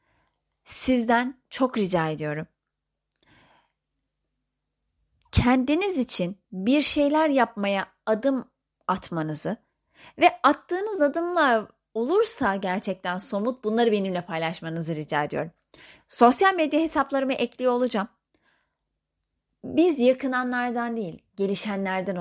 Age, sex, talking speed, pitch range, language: 30-49, female, 85 wpm, 170-255 Hz, Turkish